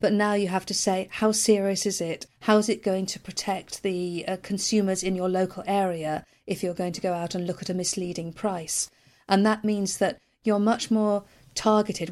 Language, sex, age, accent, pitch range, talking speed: English, female, 40-59, British, 185-215 Hz, 215 wpm